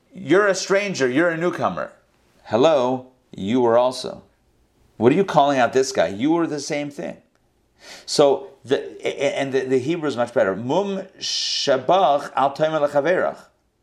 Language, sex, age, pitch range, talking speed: English, male, 40-59, 125-180 Hz, 140 wpm